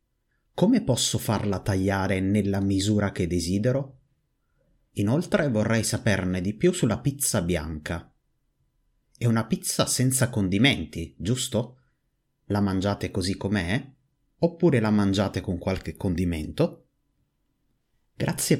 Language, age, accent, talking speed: Italian, 30-49, native, 105 wpm